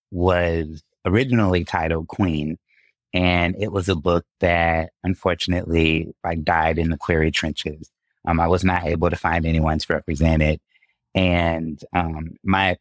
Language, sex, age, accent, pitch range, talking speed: English, male, 30-49, American, 80-90 Hz, 145 wpm